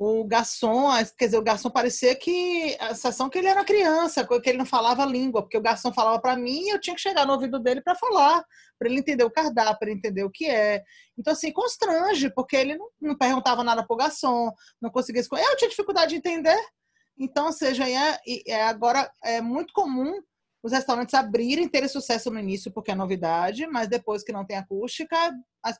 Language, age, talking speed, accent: Portuguese, 20-39, 210 wpm, Brazilian